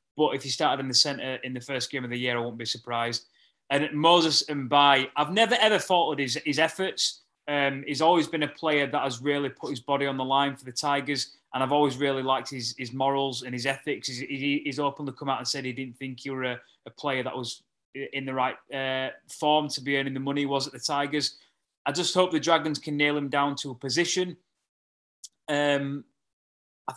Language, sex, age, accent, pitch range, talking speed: English, male, 20-39, British, 130-145 Hz, 235 wpm